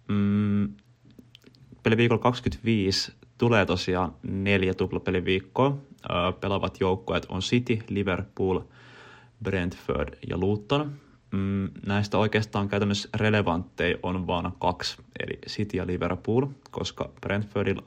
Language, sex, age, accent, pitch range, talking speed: Finnish, male, 20-39, native, 95-120 Hz, 95 wpm